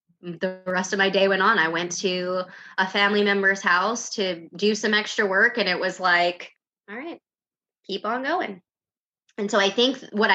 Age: 20-39